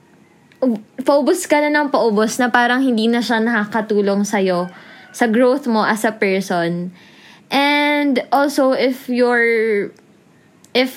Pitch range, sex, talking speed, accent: 185-240 Hz, female, 125 wpm, native